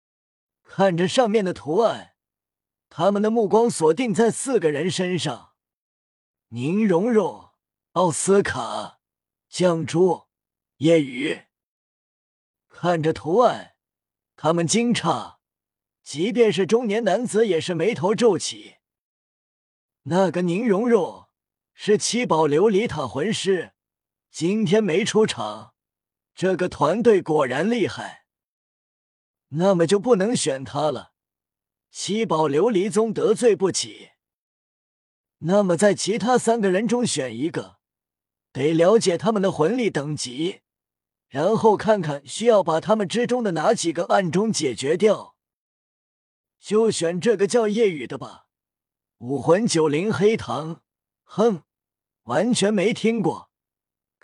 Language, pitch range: Chinese, 155-220 Hz